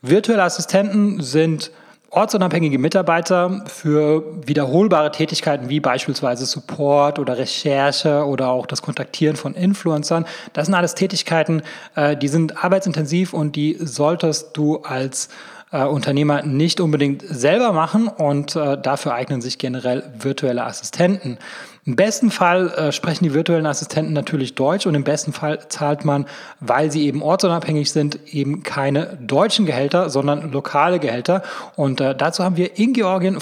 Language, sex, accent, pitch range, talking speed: German, male, German, 140-175 Hz, 140 wpm